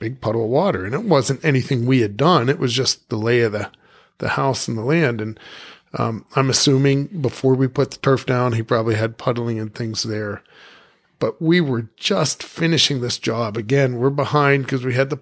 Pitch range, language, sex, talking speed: 115-140 Hz, English, male, 215 wpm